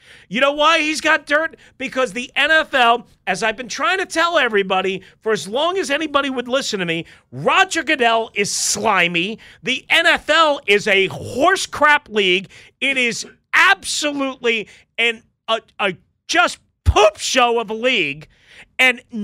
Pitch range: 200-300 Hz